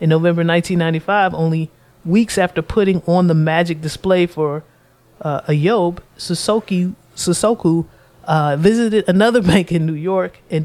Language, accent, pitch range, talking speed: English, American, 140-170 Hz, 130 wpm